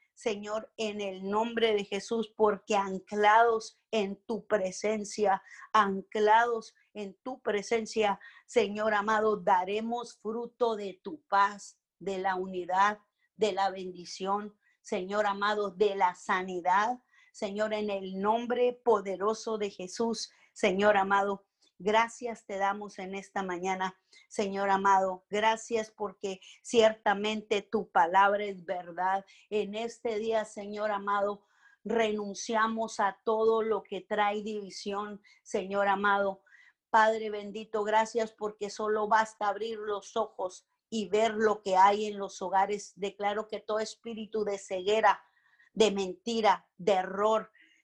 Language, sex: Spanish, female